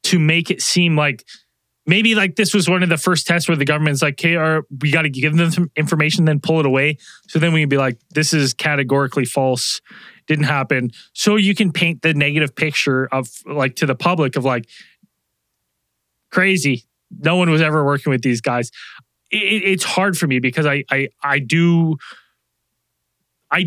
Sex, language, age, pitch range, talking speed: male, English, 20-39, 135-170 Hz, 200 wpm